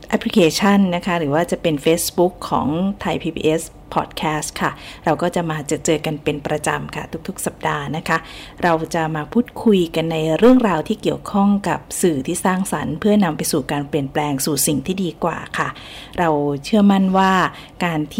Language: Thai